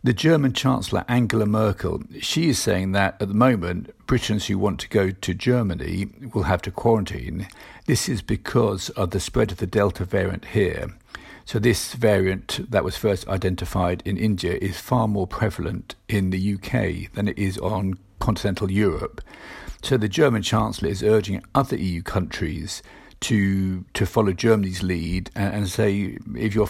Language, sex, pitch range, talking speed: English, male, 95-110 Hz, 170 wpm